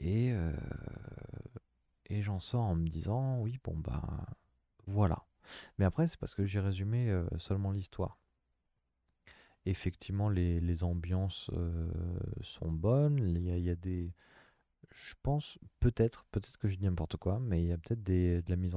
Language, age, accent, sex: French, 20-39, French, male